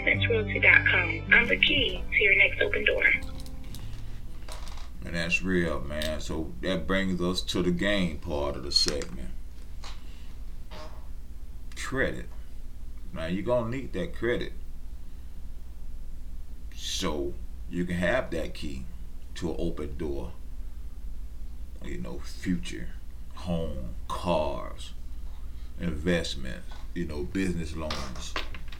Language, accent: English, American